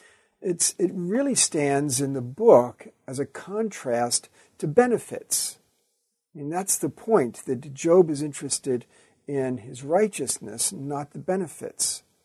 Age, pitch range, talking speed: 50-69, 130-185 Hz, 120 wpm